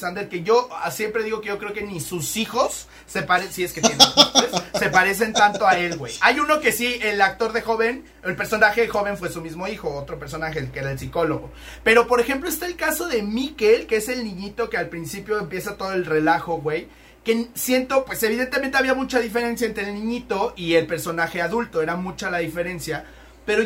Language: Spanish